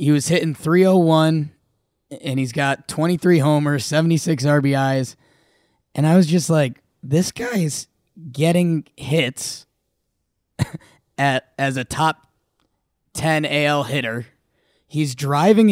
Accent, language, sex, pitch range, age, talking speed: American, English, male, 145-175 Hz, 20-39, 115 wpm